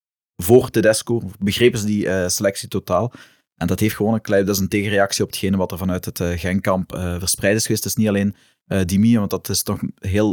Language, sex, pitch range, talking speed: Dutch, male, 100-115 Hz, 245 wpm